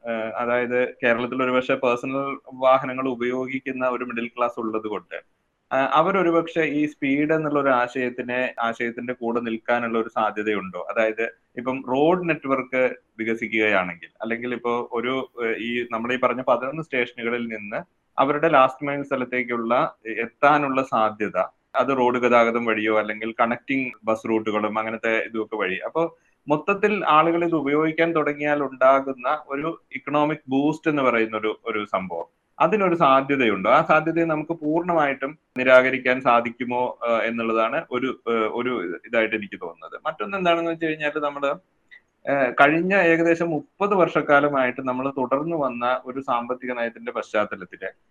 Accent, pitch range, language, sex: native, 120-150 Hz, Malayalam, male